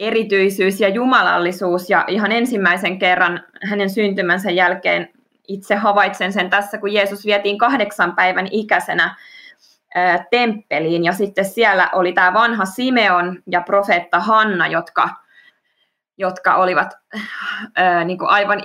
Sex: female